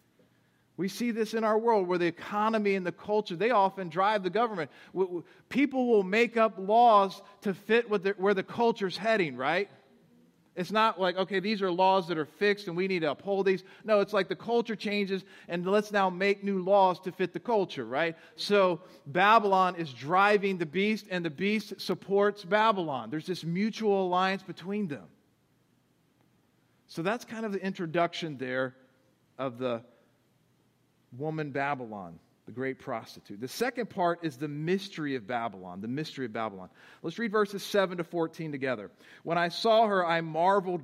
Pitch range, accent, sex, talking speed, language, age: 155-200 Hz, American, male, 175 wpm, English, 40-59